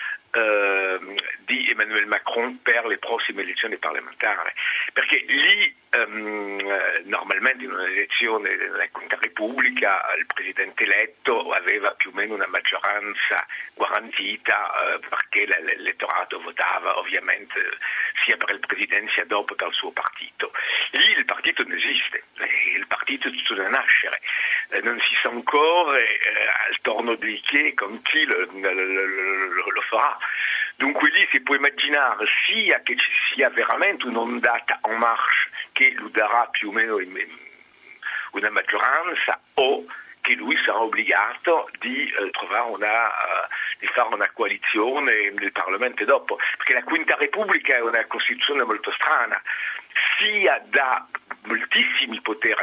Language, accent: Italian, French